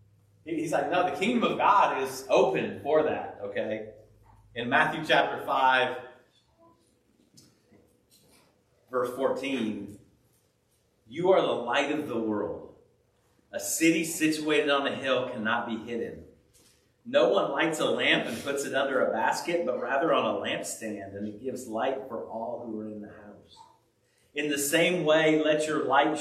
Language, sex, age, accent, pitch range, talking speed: English, male, 40-59, American, 105-135 Hz, 155 wpm